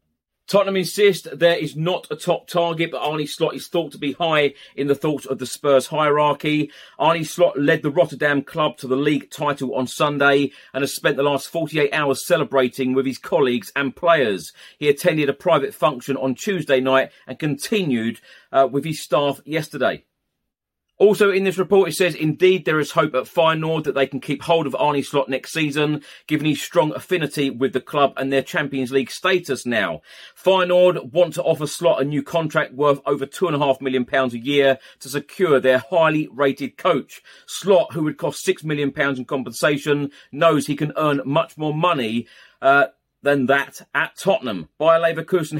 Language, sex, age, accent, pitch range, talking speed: English, male, 40-59, British, 135-160 Hz, 190 wpm